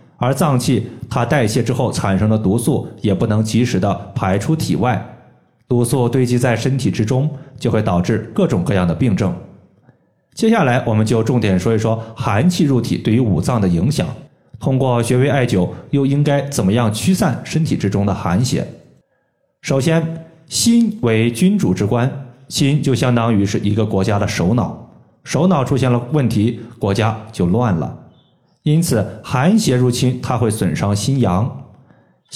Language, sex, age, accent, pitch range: Chinese, male, 20-39, native, 110-145 Hz